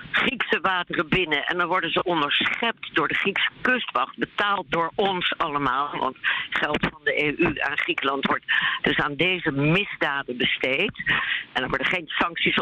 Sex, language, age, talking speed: female, Dutch, 60-79, 160 wpm